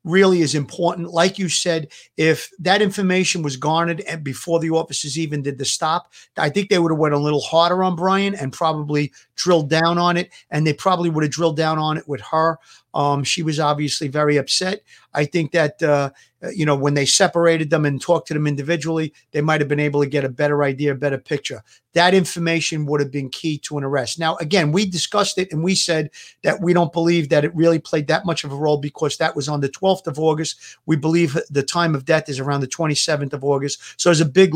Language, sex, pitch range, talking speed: English, male, 145-170 Hz, 235 wpm